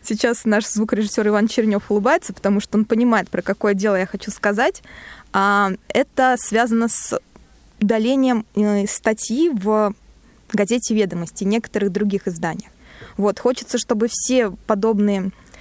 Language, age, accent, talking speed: Russian, 20-39, native, 125 wpm